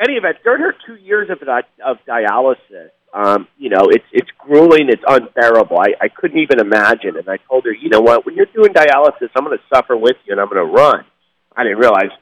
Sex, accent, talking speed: male, American, 235 wpm